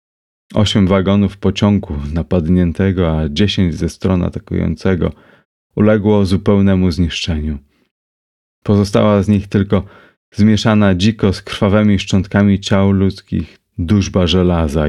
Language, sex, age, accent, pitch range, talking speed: Polish, male, 30-49, native, 85-105 Hz, 100 wpm